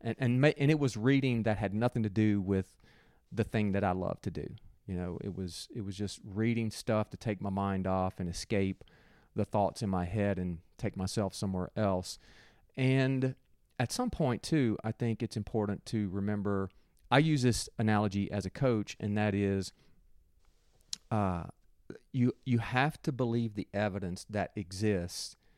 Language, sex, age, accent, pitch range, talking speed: English, male, 40-59, American, 95-120 Hz, 180 wpm